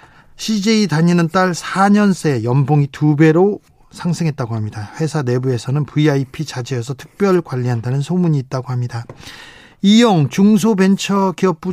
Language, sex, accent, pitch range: Korean, male, native, 145-185 Hz